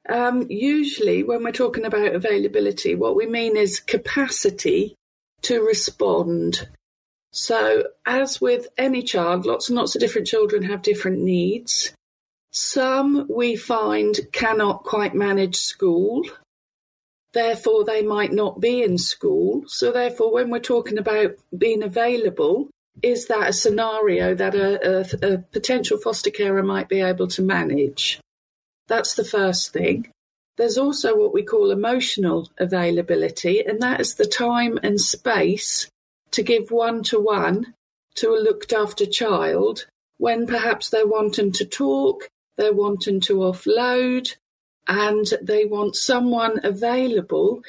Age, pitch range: 40-59, 205-295 Hz